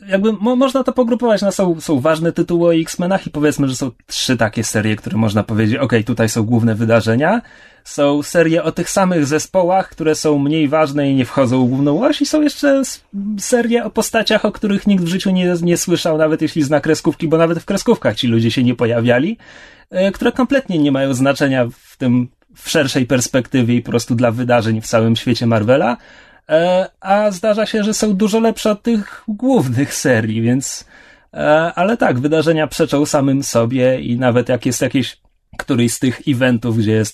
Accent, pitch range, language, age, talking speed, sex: native, 125-175 Hz, Polish, 30-49, 195 wpm, male